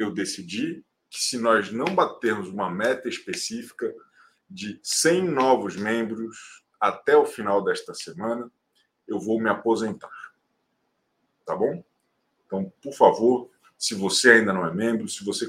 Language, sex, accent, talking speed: Portuguese, male, Brazilian, 140 wpm